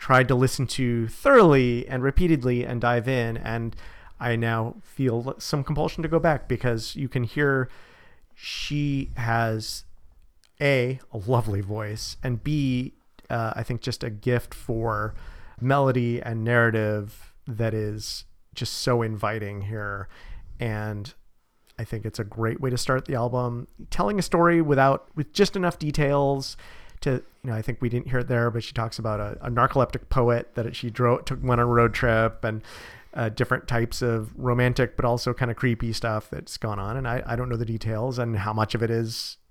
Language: English